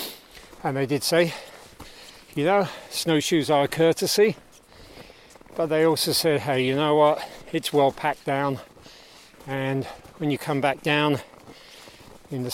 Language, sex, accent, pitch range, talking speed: English, male, British, 140-165 Hz, 145 wpm